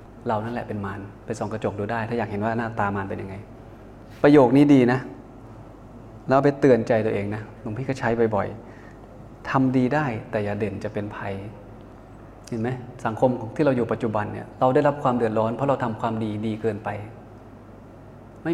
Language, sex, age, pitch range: Thai, male, 20-39, 110-130 Hz